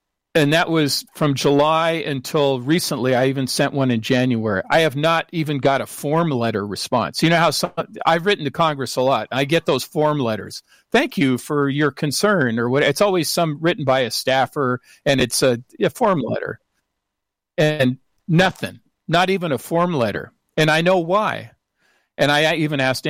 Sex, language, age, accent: male, English, 50-69, American